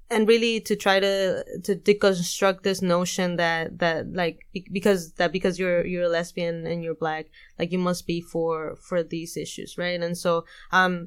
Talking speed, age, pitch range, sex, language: 185 wpm, 20-39, 170-190 Hz, female, English